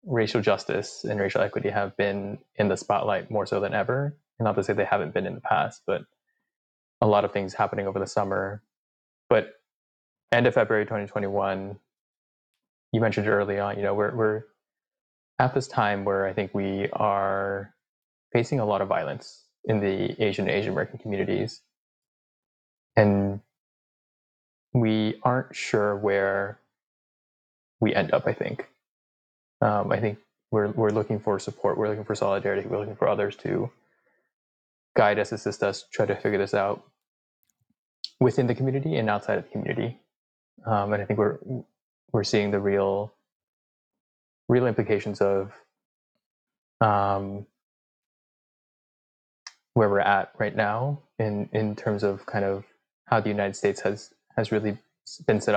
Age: 20-39